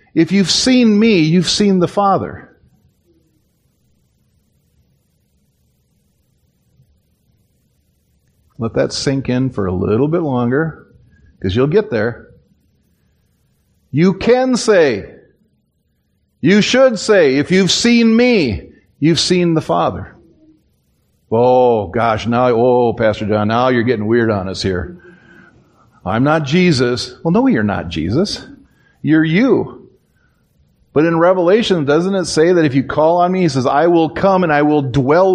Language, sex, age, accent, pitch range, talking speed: English, male, 50-69, American, 125-195 Hz, 135 wpm